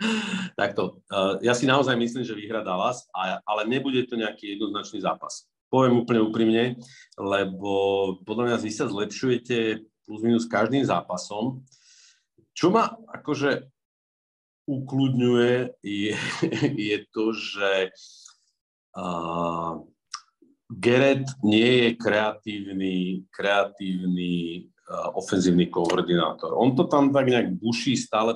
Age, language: 50-69, Slovak